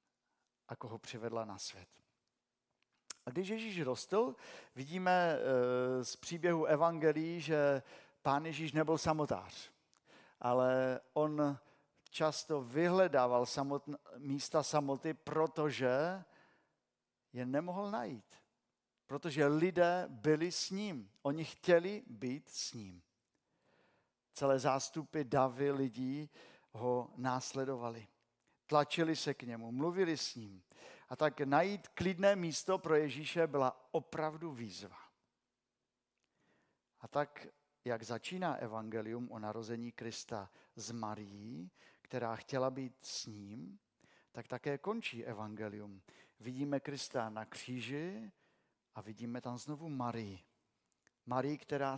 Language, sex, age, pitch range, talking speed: Czech, male, 50-69, 120-155 Hz, 105 wpm